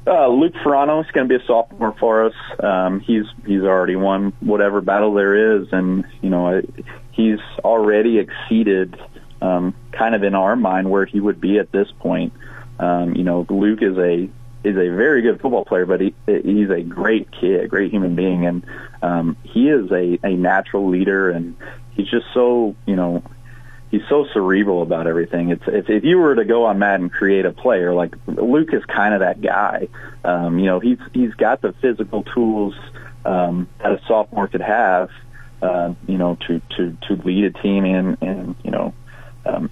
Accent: American